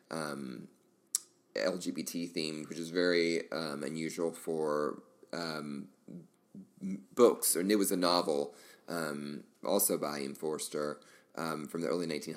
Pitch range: 75-95 Hz